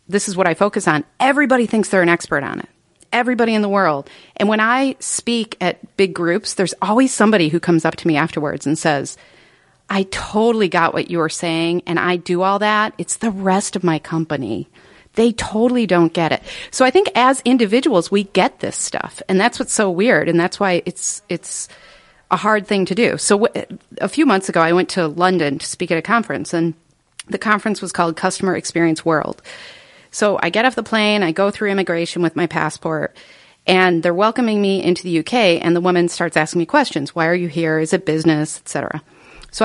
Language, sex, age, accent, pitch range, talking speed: English, female, 40-59, American, 170-215 Hz, 215 wpm